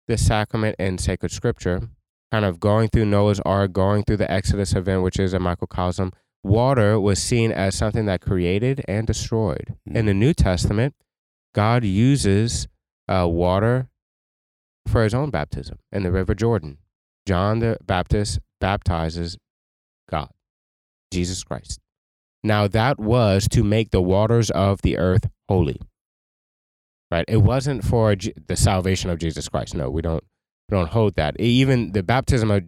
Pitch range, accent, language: 90-115 Hz, American, English